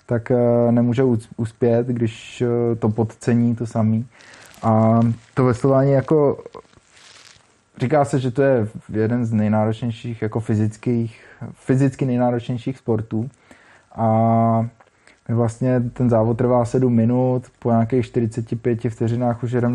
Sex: male